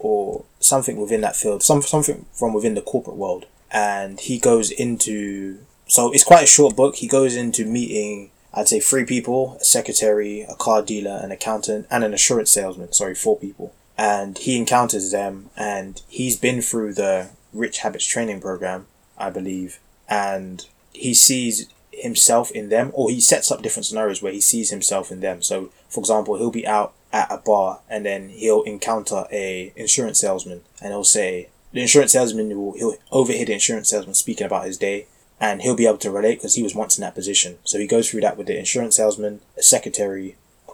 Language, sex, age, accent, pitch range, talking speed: English, male, 20-39, British, 100-120 Hz, 195 wpm